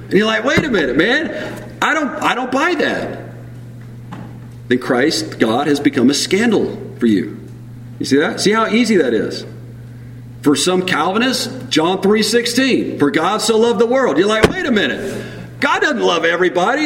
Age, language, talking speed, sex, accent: 40-59, English, 180 wpm, male, American